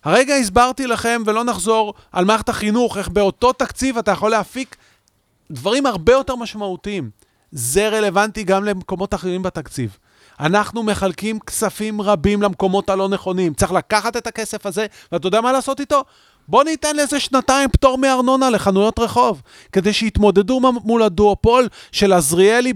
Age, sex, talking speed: 30-49, male, 145 wpm